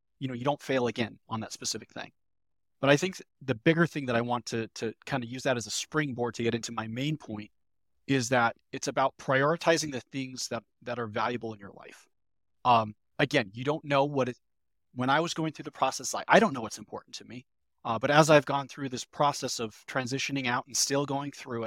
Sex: male